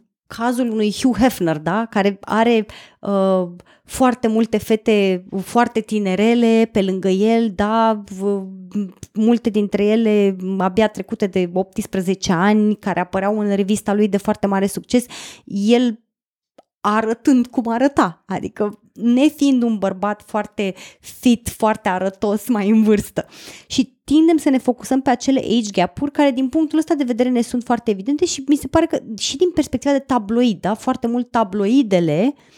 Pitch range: 205-250 Hz